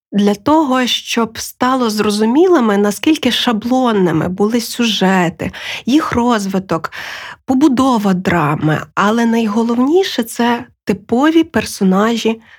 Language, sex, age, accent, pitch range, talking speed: Ukrainian, female, 20-39, native, 185-235 Hz, 90 wpm